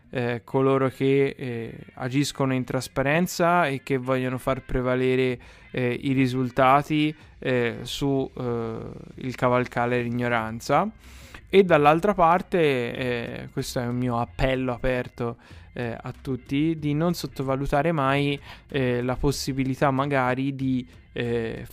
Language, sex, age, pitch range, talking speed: Italian, male, 20-39, 120-135 Hz, 120 wpm